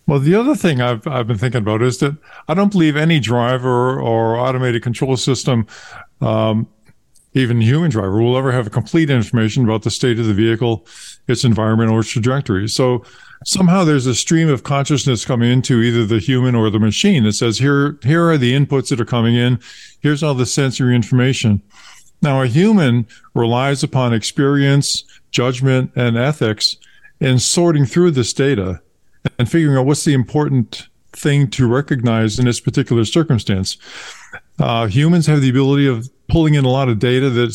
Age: 50-69